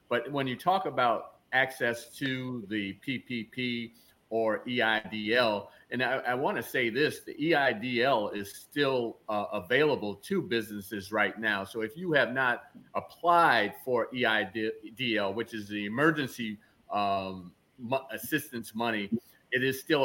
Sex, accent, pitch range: male, American, 110-135 Hz